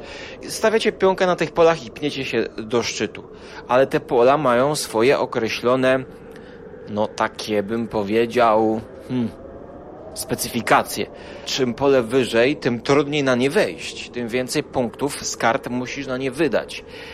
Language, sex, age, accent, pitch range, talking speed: Polish, male, 30-49, native, 115-155 Hz, 135 wpm